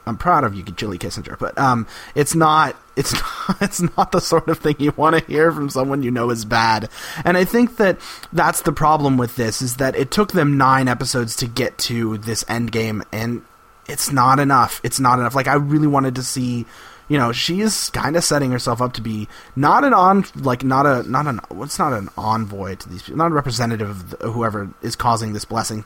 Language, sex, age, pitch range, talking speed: English, male, 30-49, 110-145 Hz, 225 wpm